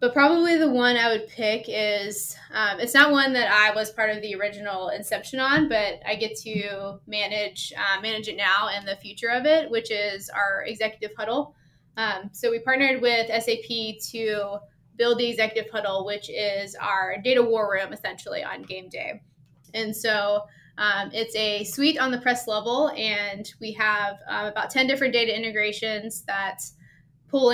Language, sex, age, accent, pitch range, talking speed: English, female, 20-39, American, 205-235 Hz, 175 wpm